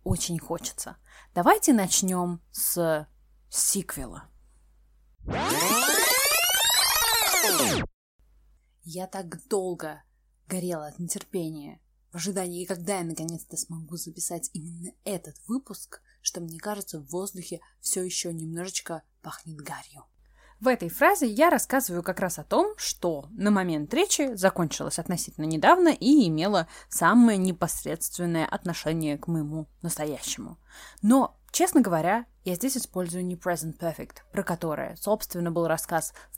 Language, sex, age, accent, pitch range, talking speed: Russian, female, 20-39, native, 165-235 Hz, 115 wpm